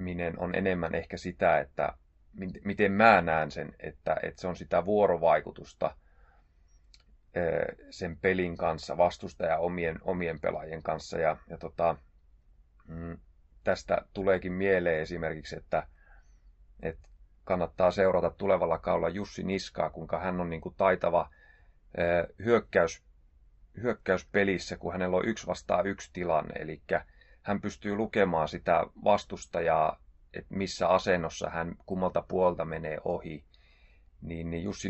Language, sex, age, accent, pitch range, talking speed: Finnish, male, 30-49, native, 80-95 Hz, 120 wpm